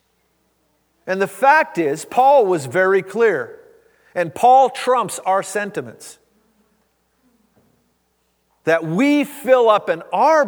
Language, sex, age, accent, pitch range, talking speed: English, male, 40-59, American, 185-260 Hz, 110 wpm